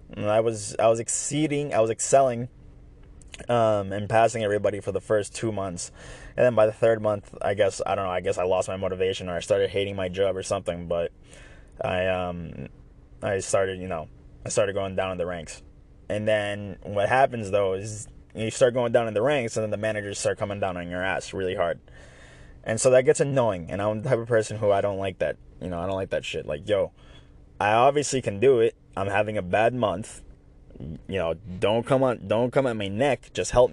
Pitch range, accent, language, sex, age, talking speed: 90-120 Hz, American, English, male, 20-39, 230 wpm